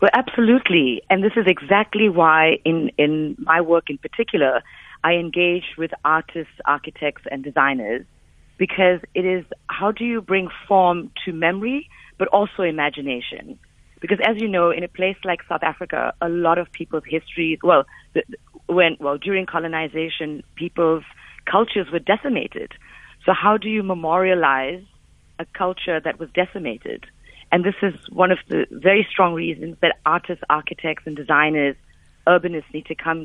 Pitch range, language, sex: 160-190 Hz, English, female